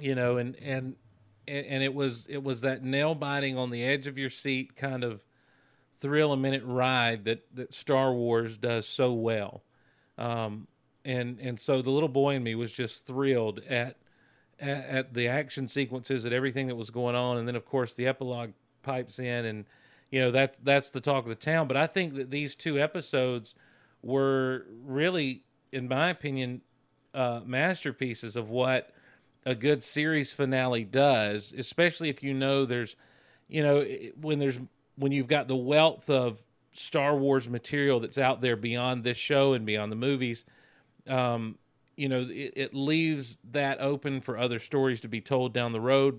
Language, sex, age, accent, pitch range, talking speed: English, male, 40-59, American, 120-140 Hz, 180 wpm